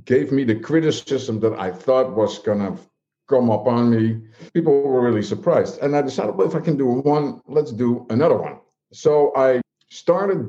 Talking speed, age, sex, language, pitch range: 195 wpm, 50-69, male, English, 110-135 Hz